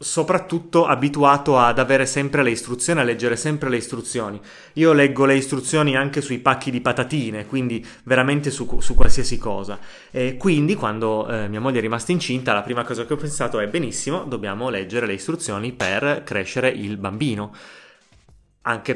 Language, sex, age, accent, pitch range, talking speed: Italian, male, 20-39, native, 115-140 Hz, 170 wpm